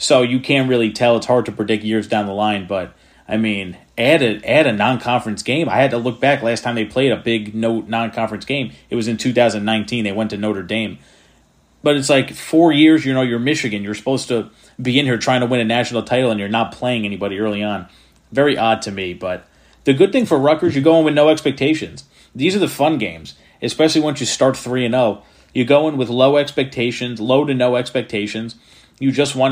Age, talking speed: 30-49, 235 wpm